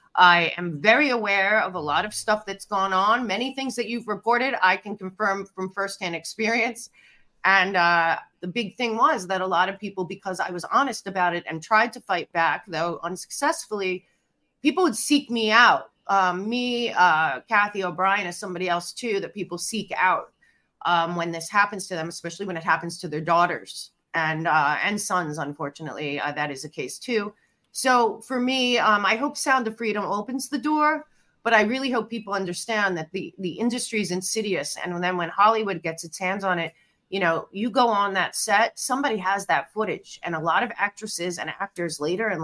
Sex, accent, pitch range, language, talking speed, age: female, American, 175-220 Hz, English, 200 wpm, 30-49